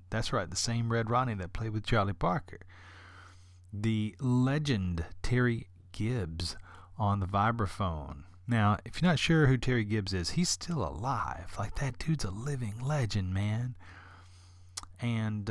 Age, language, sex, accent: 40-59, English, male, American